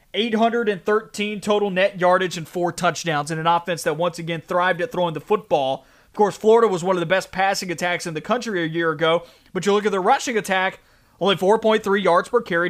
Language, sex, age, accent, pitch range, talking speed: English, male, 30-49, American, 165-205 Hz, 215 wpm